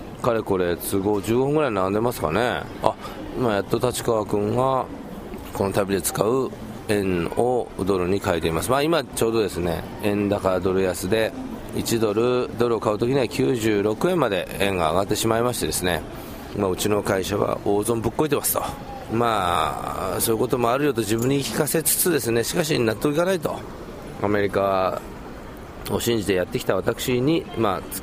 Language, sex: Japanese, male